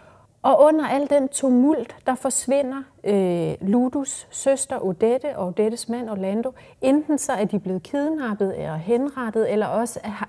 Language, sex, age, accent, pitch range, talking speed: Danish, female, 30-49, native, 205-265 Hz, 150 wpm